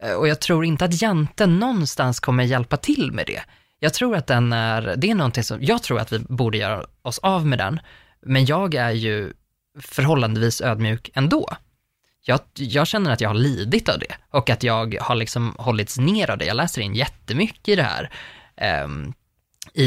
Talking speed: 195 wpm